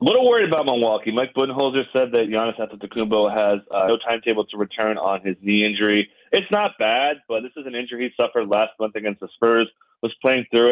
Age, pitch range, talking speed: 30-49, 105-130 Hz, 220 wpm